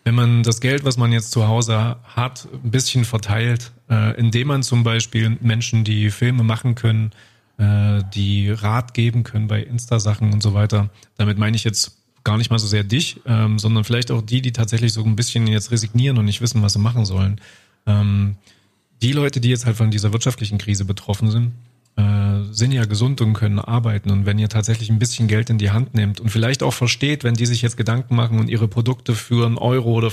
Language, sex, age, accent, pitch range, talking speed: German, male, 30-49, German, 105-120 Hz, 205 wpm